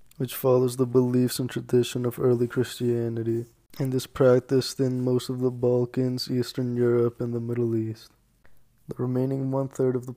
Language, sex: English, male